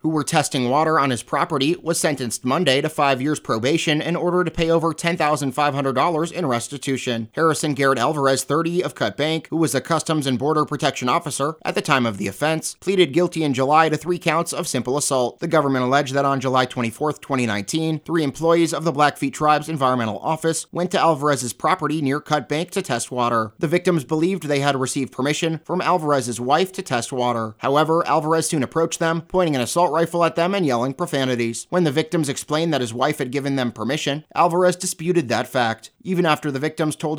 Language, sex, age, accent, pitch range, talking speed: English, male, 30-49, American, 135-165 Hz, 205 wpm